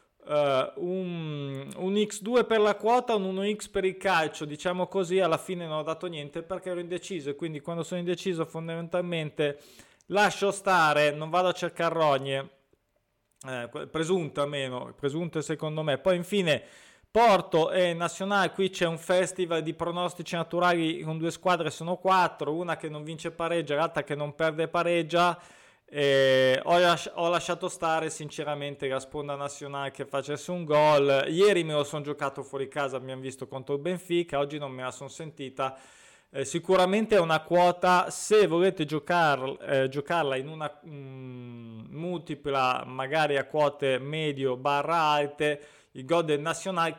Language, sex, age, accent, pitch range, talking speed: Italian, male, 20-39, native, 145-180 Hz, 155 wpm